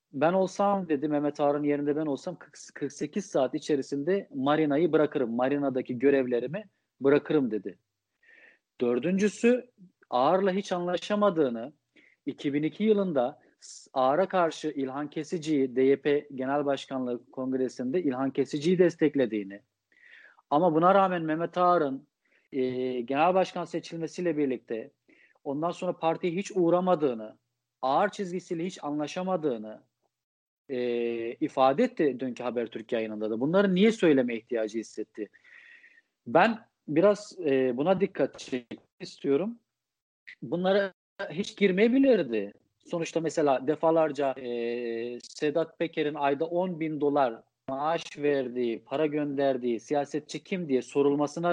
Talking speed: 110 wpm